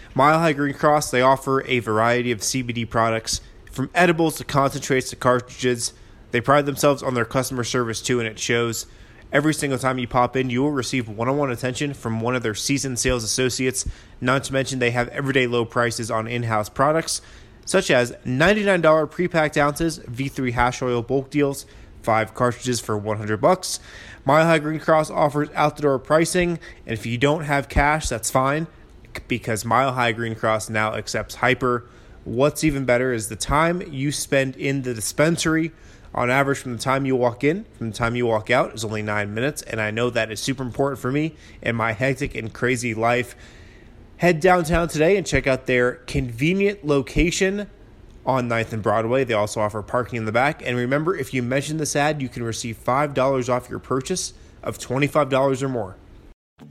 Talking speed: 190 wpm